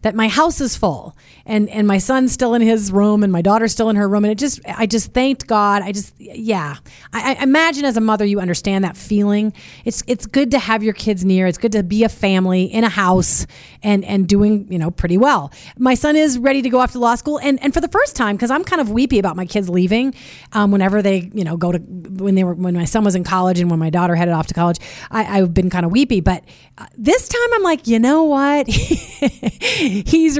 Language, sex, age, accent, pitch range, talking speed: English, female, 30-49, American, 190-255 Hz, 255 wpm